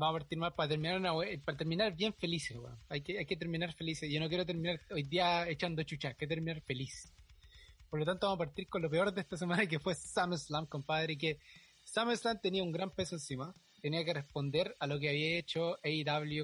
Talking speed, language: 225 wpm, Spanish